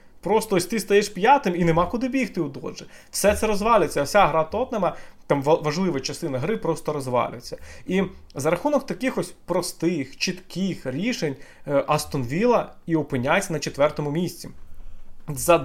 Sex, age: male, 30-49